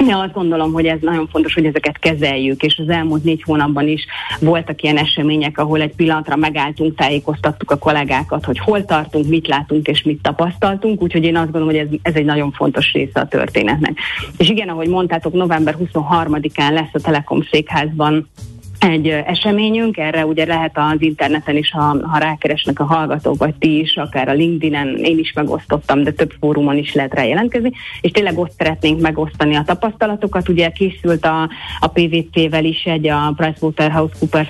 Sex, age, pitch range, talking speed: female, 30-49, 150-175 Hz, 175 wpm